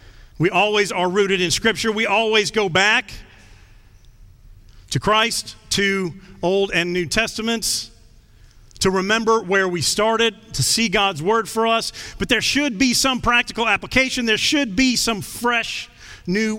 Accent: American